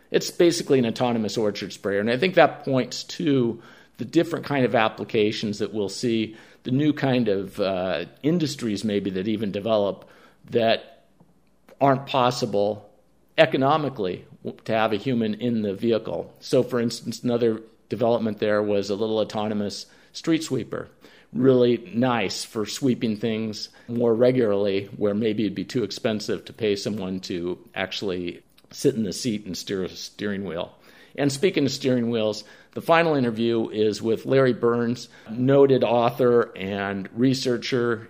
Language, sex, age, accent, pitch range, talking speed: English, male, 50-69, American, 105-130 Hz, 150 wpm